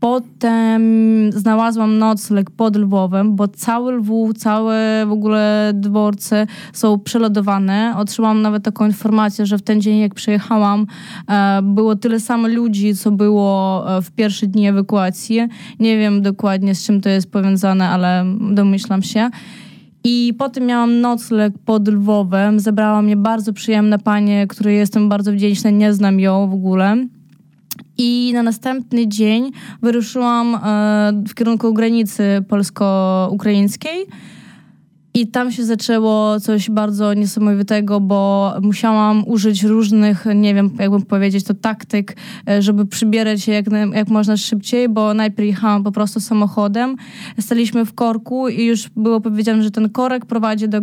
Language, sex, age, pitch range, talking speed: Polish, female, 20-39, 205-225 Hz, 135 wpm